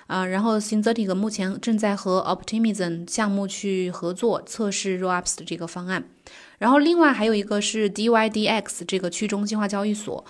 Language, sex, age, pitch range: Chinese, female, 20-39, 185-220 Hz